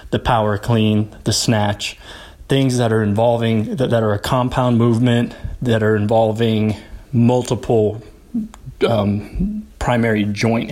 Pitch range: 105-120 Hz